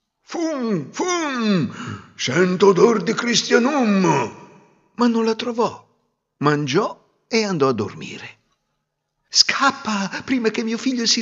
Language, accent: Italian, native